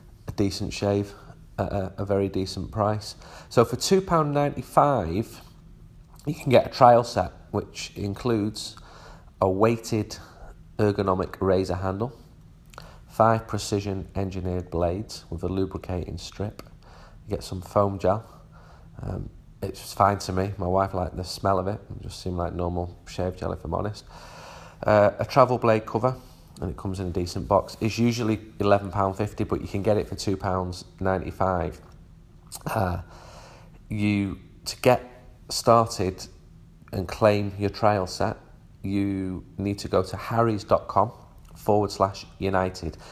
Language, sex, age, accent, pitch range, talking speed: English, male, 30-49, British, 90-110 Hz, 140 wpm